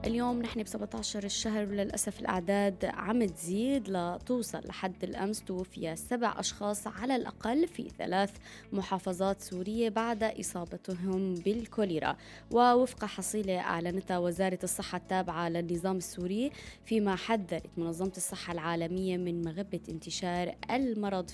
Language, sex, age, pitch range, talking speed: Arabic, female, 20-39, 175-215 Hz, 115 wpm